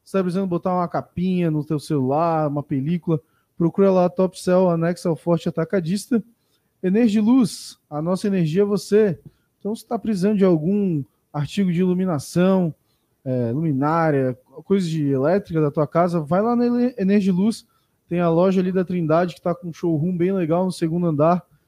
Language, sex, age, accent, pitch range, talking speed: Portuguese, male, 20-39, Brazilian, 165-190 Hz, 185 wpm